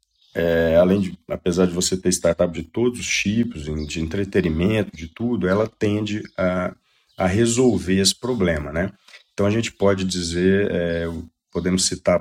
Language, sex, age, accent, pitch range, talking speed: Portuguese, male, 40-59, Brazilian, 90-100 Hz, 145 wpm